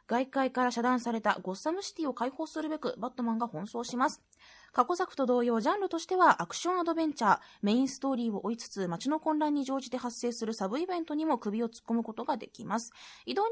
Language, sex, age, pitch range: Japanese, female, 20-39, 225-300 Hz